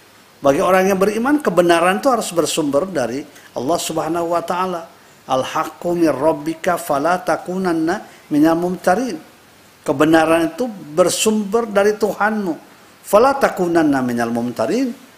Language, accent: Indonesian, native